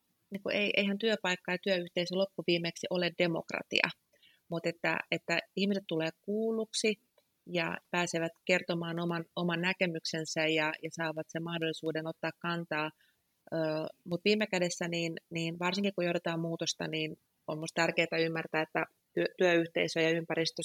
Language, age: Finnish, 30-49